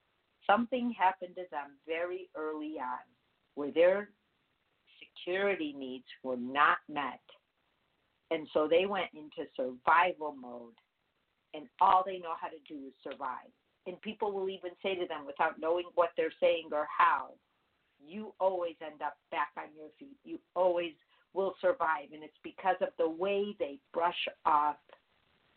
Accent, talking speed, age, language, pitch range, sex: American, 155 wpm, 50-69, English, 155-205 Hz, female